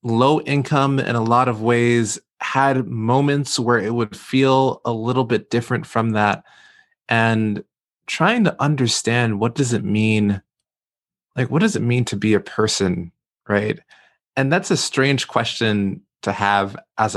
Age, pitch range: 20-39, 100-130 Hz